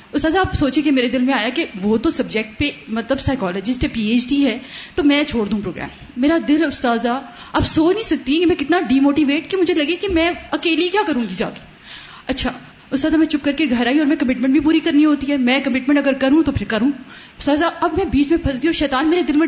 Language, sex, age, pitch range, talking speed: Urdu, female, 30-49, 240-320 Hz, 255 wpm